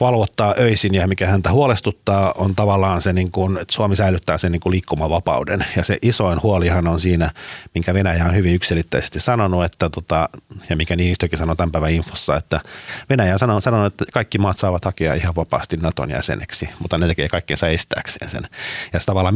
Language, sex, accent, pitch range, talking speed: Finnish, male, native, 85-100 Hz, 180 wpm